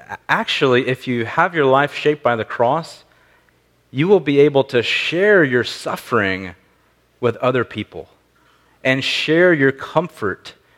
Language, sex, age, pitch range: English, male, 30-49, 120-170 Hz